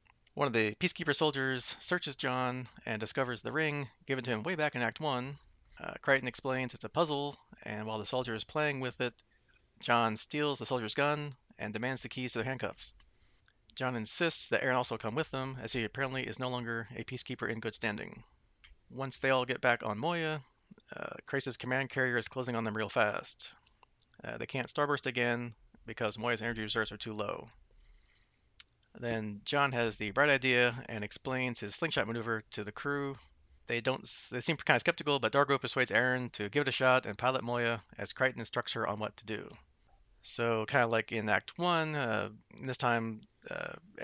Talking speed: 200 wpm